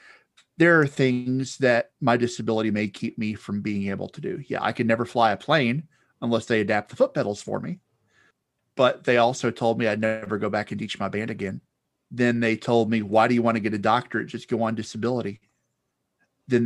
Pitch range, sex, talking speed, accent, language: 105-120 Hz, male, 215 wpm, American, English